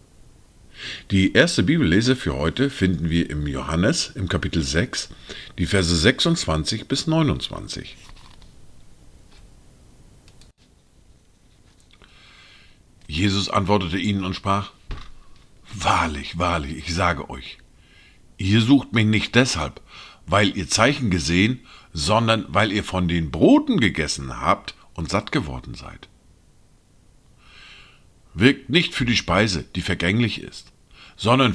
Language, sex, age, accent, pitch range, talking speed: German, male, 50-69, German, 90-135 Hz, 110 wpm